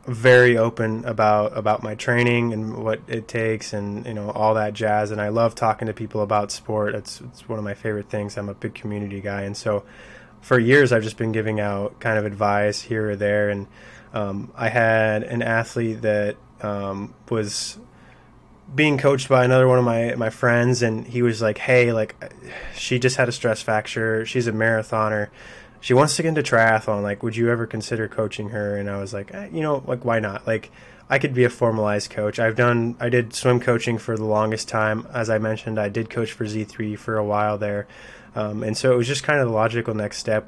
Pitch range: 105-120 Hz